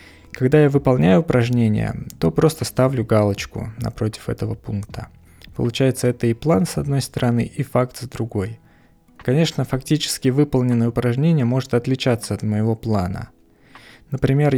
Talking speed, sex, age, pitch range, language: 130 wpm, male, 20-39, 110-130 Hz, Russian